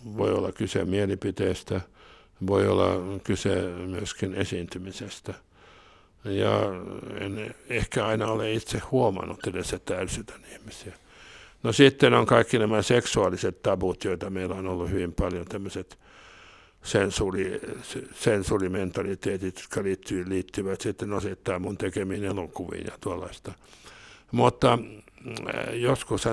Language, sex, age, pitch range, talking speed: Finnish, male, 60-79, 95-110 Hz, 105 wpm